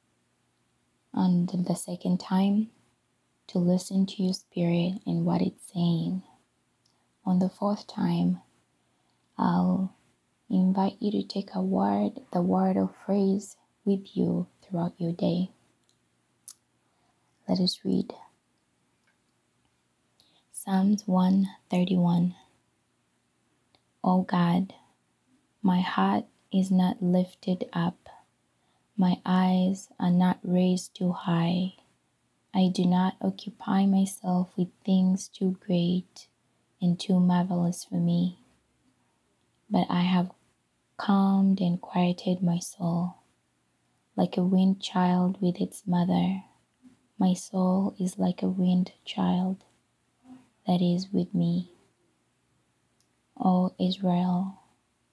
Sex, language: female, English